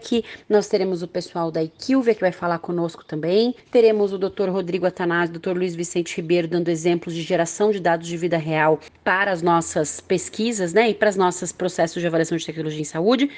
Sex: female